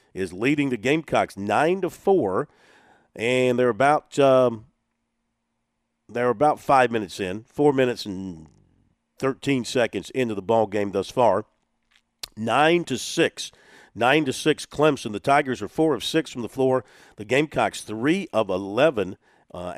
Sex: male